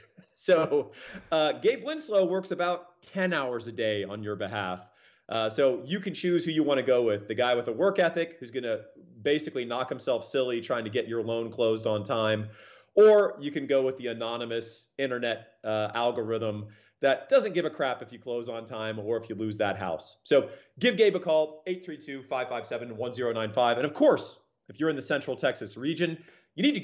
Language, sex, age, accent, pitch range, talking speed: English, male, 30-49, American, 115-175 Hz, 200 wpm